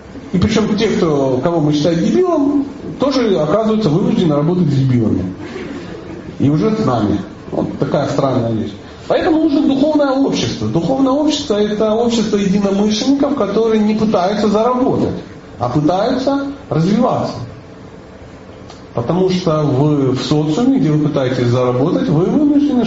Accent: native